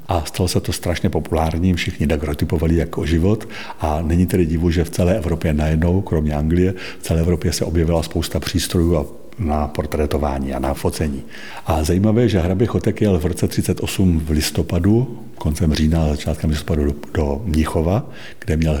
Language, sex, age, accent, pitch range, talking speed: Czech, male, 60-79, native, 80-95 Hz, 165 wpm